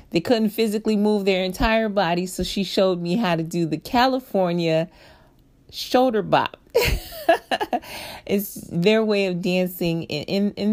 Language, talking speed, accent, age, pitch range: English, 145 wpm, American, 40-59, 155-205 Hz